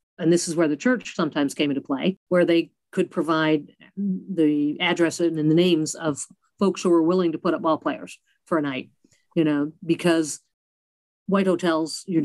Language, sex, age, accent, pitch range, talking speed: English, female, 50-69, American, 150-175 Hz, 180 wpm